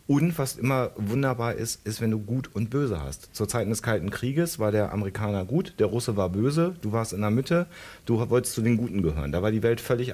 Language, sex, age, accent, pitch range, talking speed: German, male, 40-59, German, 100-125 Hz, 245 wpm